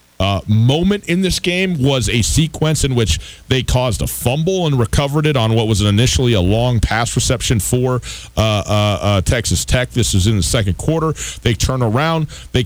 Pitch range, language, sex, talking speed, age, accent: 115-155 Hz, English, male, 195 wpm, 40-59, American